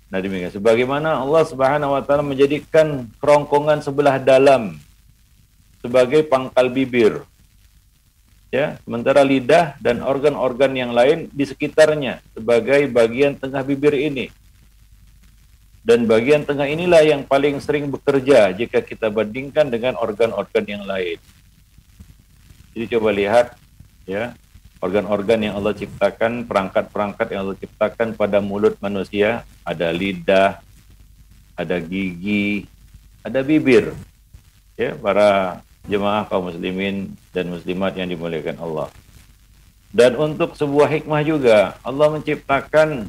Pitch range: 100-140 Hz